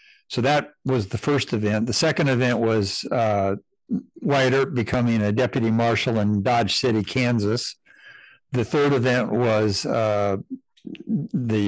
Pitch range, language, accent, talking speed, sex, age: 105-130 Hz, English, American, 140 wpm, male, 60-79